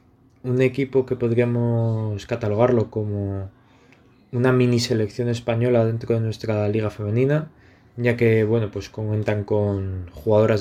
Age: 20-39